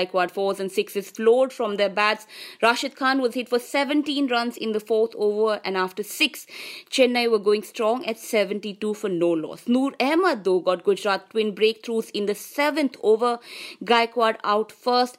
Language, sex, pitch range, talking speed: English, female, 195-255 Hz, 180 wpm